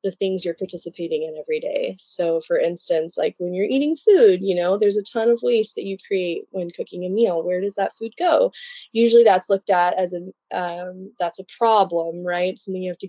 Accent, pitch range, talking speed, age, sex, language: American, 175-220 Hz, 225 wpm, 20-39, female, English